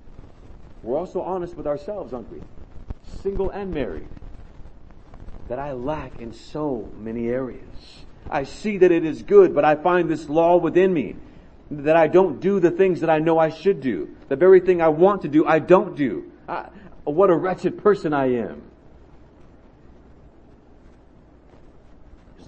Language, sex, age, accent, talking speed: English, male, 40-59, American, 160 wpm